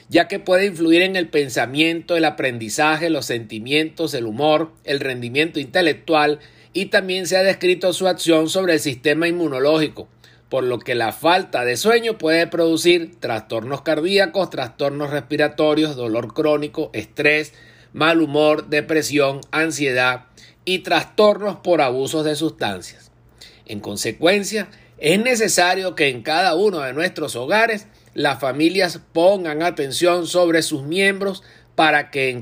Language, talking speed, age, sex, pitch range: Spanish, 135 wpm, 50-69, male, 145-185 Hz